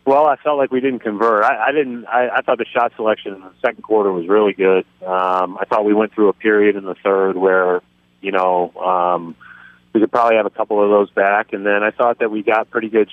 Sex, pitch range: male, 95-110 Hz